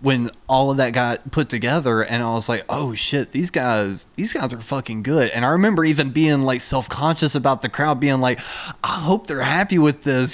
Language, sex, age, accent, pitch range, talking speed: English, male, 20-39, American, 120-150 Hz, 225 wpm